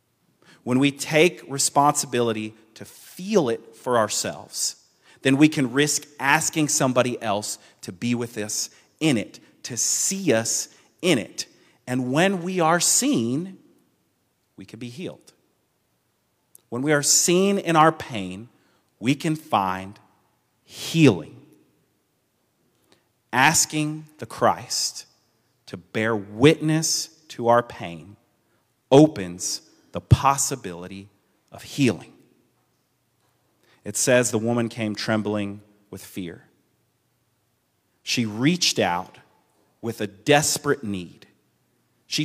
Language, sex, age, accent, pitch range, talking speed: English, male, 40-59, American, 110-150 Hz, 110 wpm